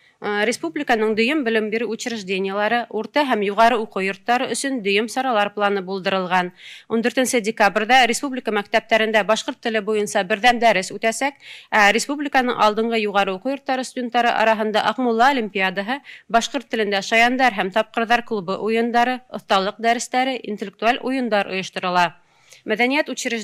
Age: 30-49